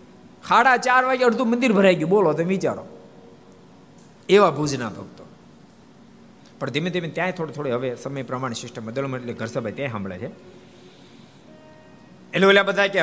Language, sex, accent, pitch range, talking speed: Gujarati, male, native, 105-155 Hz, 140 wpm